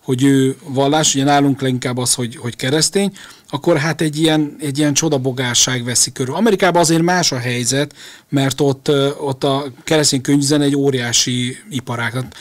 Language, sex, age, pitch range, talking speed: Hungarian, male, 40-59, 130-150 Hz, 160 wpm